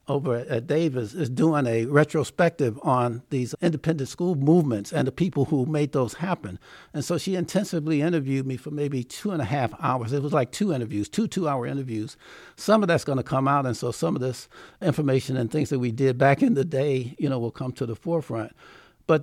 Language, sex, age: English, male, 60-79